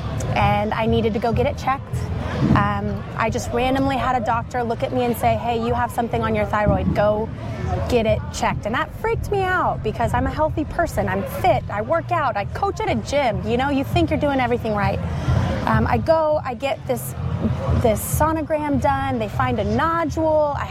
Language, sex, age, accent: English, female, 20-39, American